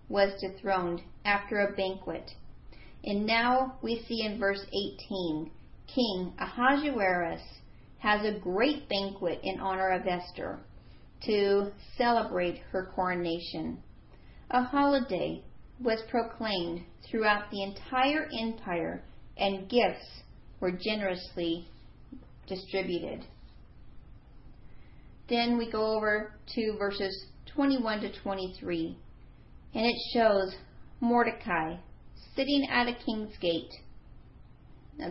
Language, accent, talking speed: English, American, 100 wpm